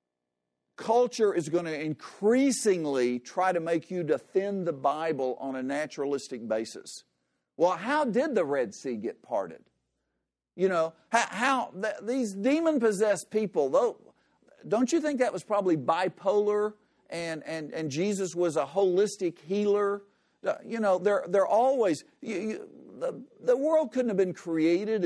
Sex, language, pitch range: male, English, 155-215 Hz